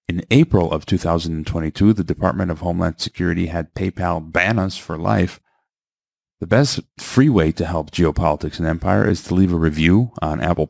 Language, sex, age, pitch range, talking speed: English, male, 30-49, 85-105 Hz, 175 wpm